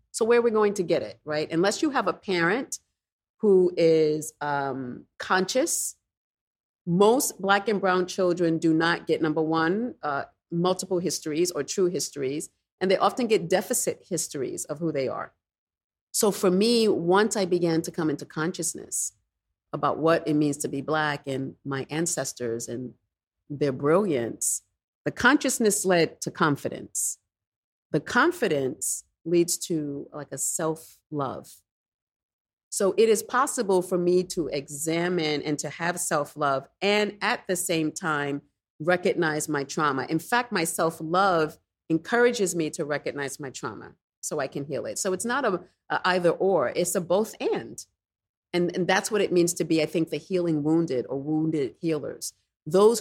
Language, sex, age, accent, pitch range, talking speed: English, female, 40-59, American, 145-190 Hz, 160 wpm